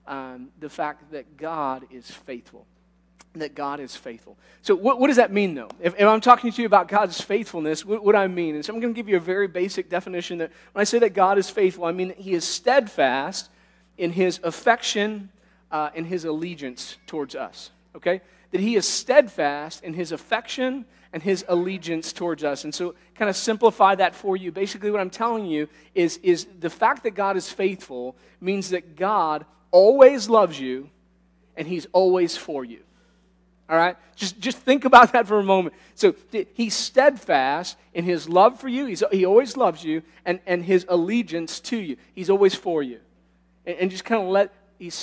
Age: 40-59